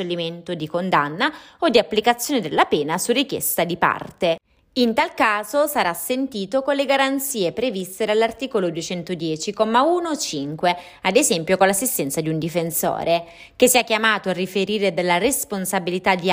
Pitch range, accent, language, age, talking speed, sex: 175-245 Hz, native, Italian, 20-39, 135 wpm, female